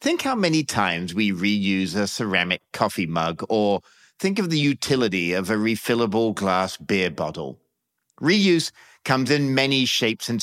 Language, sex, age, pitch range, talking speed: English, male, 50-69, 105-165 Hz, 155 wpm